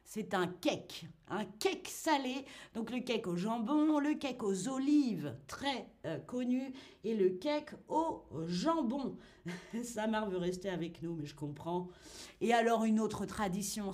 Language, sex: French, female